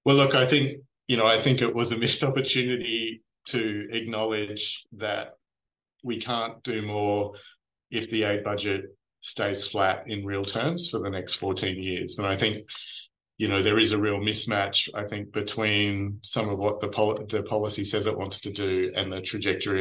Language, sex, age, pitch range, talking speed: English, male, 30-49, 100-120 Hz, 190 wpm